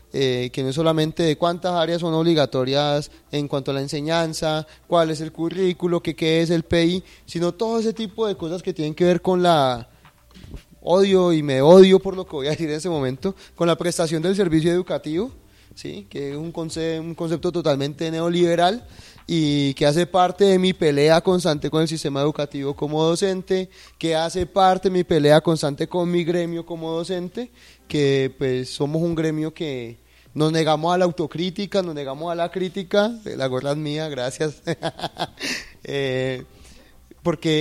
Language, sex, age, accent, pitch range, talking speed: Spanish, male, 20-39, Colombian, 145-175 Hz, 175 wpm